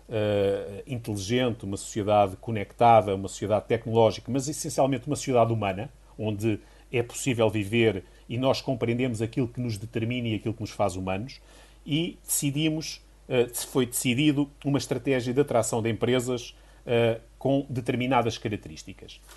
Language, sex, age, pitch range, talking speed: Portuguese, male, 40-59, 115-135 Hz, 145 wpm